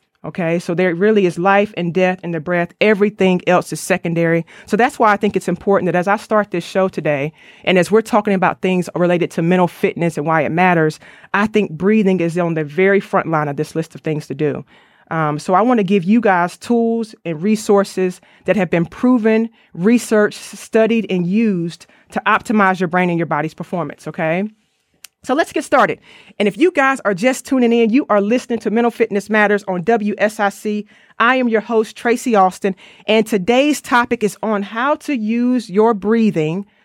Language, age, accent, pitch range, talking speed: English, 30-49, American, 175-220 Hz, 200 wpm